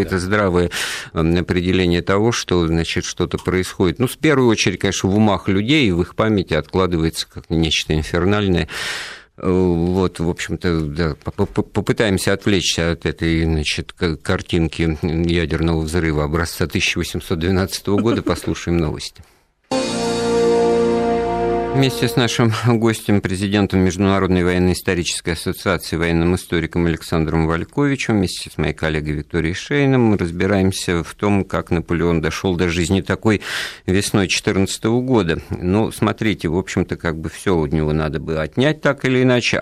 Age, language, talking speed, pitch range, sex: 50-69, Russian, 130 wpm, 85-105 Hz, male